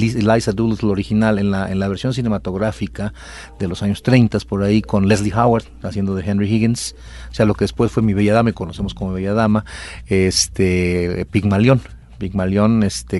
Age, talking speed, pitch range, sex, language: 40-59, 180 wpm, 95-110 Hz, male, Spanish